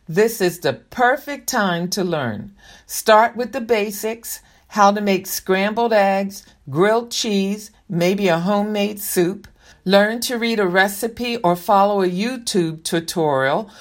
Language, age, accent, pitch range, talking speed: English, 50-69, American, 170-220 Hz, 140 wpm